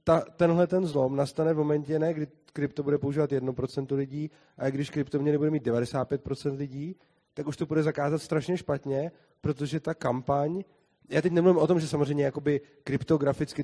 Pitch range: 135-155 Hz